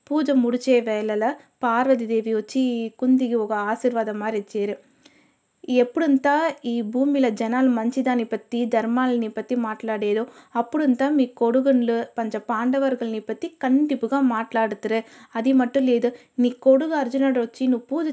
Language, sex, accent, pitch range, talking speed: Telugu, female, native, 230-270 Hz, 120 wpm